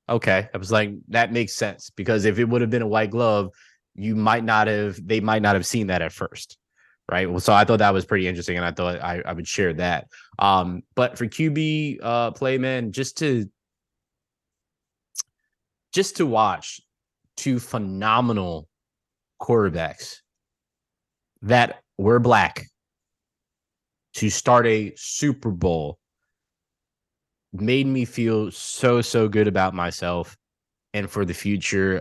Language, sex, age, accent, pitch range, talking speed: English, male, 20-39, American, 95-115 Hz, 150 wpm